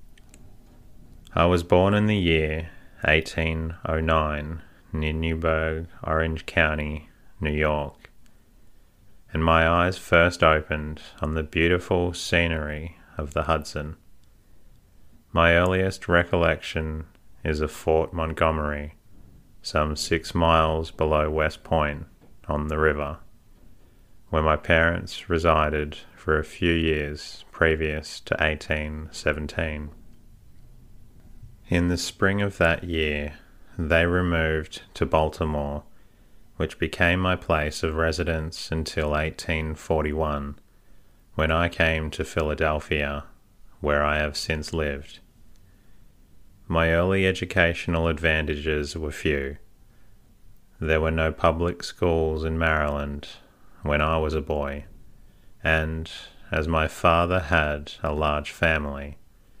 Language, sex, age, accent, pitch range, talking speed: English, male, 30-49, Australian, 75-85 Hz, 105 wpm